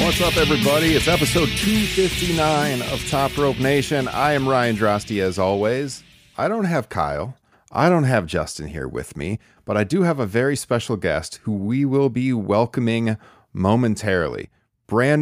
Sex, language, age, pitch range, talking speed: male, English, 40-59, 105-135 Hz, 165 wpm